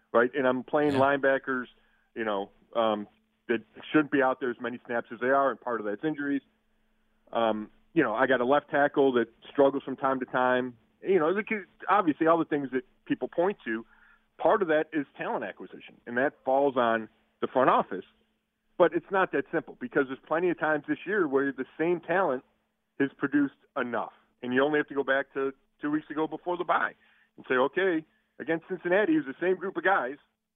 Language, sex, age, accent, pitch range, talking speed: English, male, 40-59, American, 125-155 Hz, 210 wpm